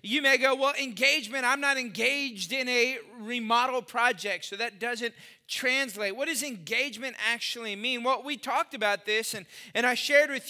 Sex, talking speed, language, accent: male, 175 wpm, English, American